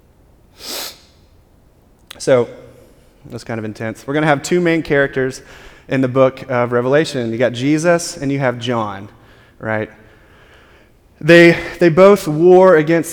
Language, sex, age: English, male, 30-49